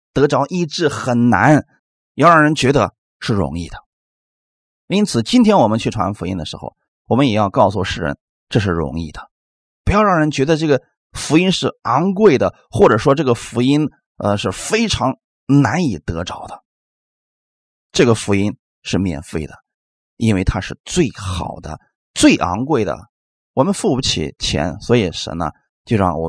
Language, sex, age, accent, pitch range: Chinese, male, 30-49, native, 90-140 Hz